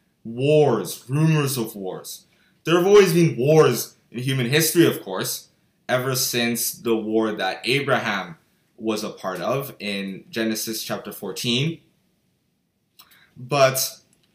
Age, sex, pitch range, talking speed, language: 20-39, male, 120-170 Hz, 120 wpm, English